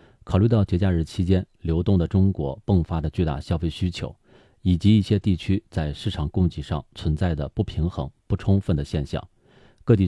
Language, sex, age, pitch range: Chinese, male, 40-59, 80-105 Hz